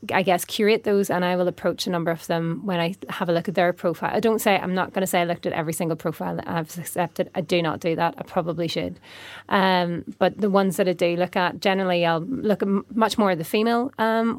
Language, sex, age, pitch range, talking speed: English, female, 30-49, 165-190 Hz, 265 wpm